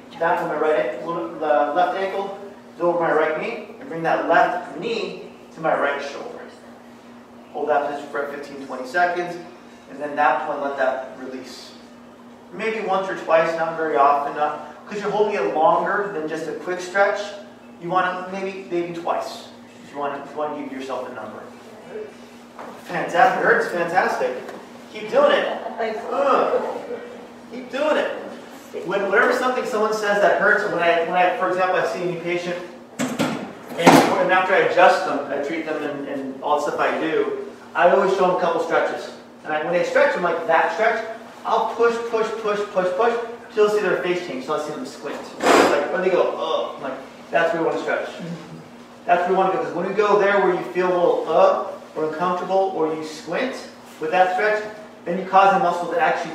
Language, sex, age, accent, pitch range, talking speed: English, male, 30-49, American, 155-210 Hz, 205 wpm